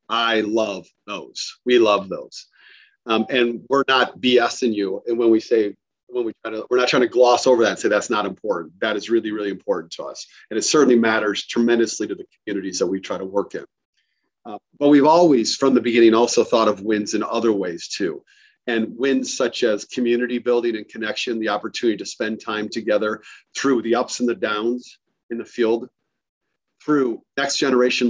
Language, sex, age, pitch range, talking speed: English, male, 40-59, 110-135 Hz, 190 wpm